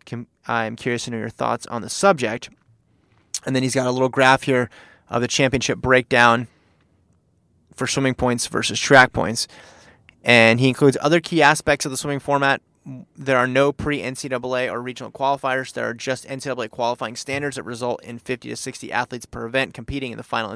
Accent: American